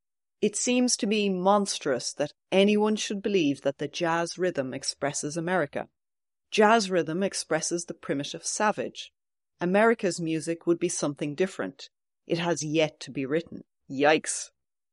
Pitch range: 160-215 Hz